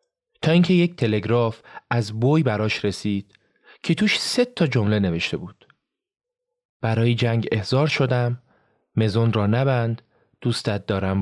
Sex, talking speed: male, 130 wpm